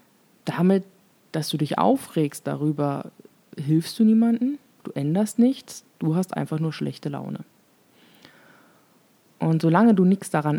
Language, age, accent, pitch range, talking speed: German, 30-49, German, 150-200 Hz, 130 wpm